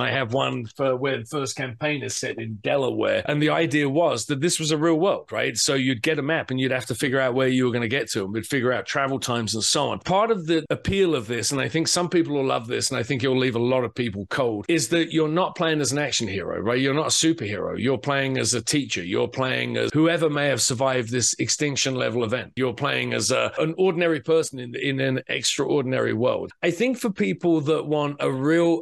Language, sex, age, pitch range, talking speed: English, male, 40-59, 125-155 Hz, 260 wpm